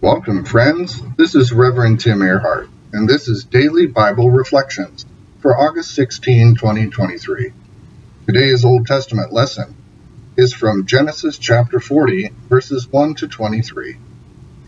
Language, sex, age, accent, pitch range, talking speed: English, male, 50-69, American, 115-145 Hz, 125 wpm